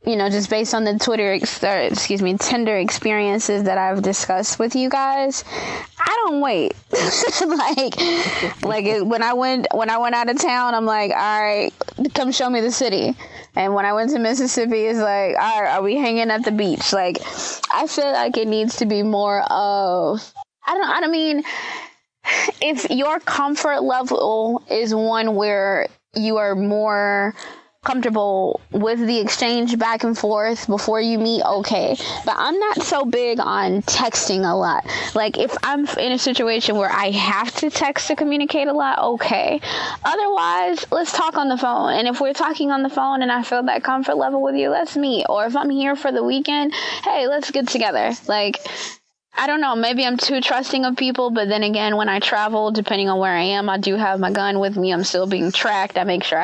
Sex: female